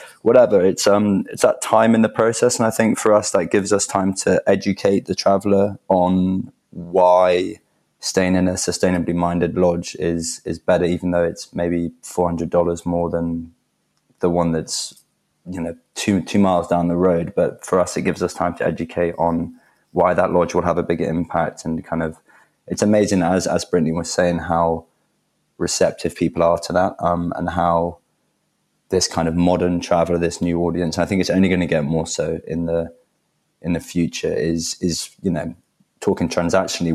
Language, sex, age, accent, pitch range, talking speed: English, male, 20-39, British, 85-90 Hz, 190 wpm